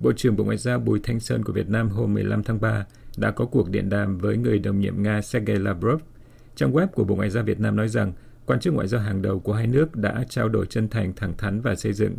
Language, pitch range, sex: Vietnamese, 105-120 Hz, male